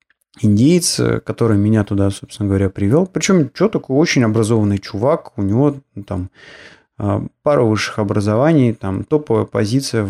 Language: Russian